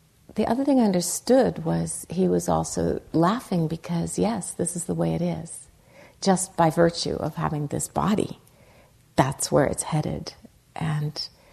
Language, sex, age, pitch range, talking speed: English, female, 50-69, 145-170 Hz, 155 wpm